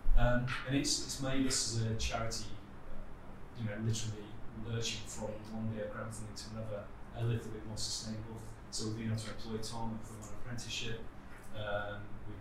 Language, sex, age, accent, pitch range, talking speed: English, male, 30-49, British, 100-115 Hz, 185 wpm